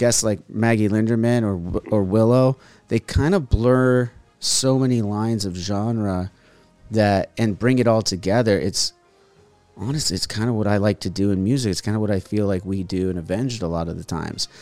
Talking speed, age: 205 wpm, 30-49